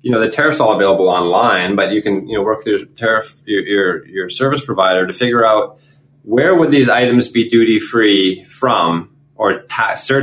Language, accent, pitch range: English, American, 100-140 Hz